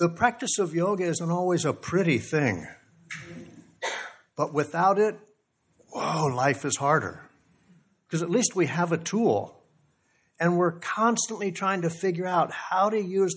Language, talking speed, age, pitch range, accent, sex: English, 150 wpm, 60-79, 140-180 Hz, American, male